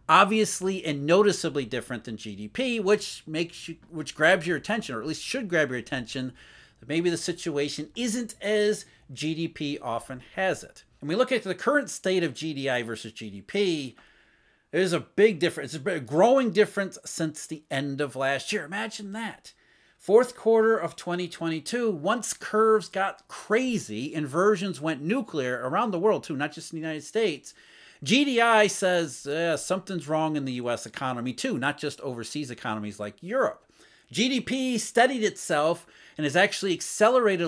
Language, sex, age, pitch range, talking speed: English, male, 40-59, 140-210 Hz, 160 wpm